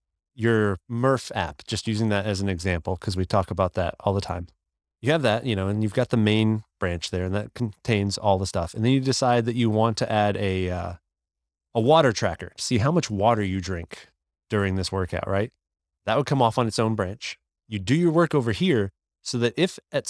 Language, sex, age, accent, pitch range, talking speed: English, male, 30-49, American, 90-130 Hz, 230 wpm